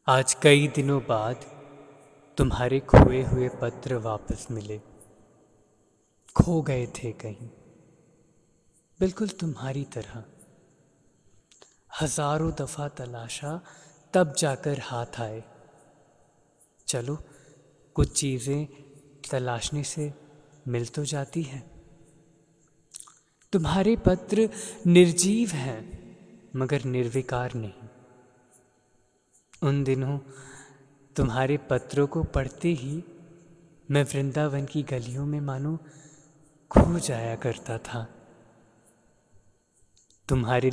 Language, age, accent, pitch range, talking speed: Hindi, 30-49, native, 125-160 Hz, 85 wpm